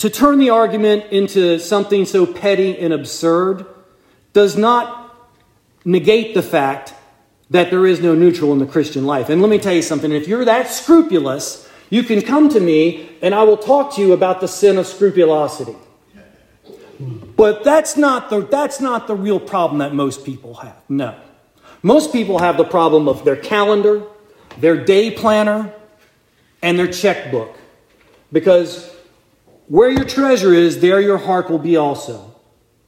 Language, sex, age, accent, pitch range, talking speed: English, male, 40-59, American, 145-205 Hz, 160 wpm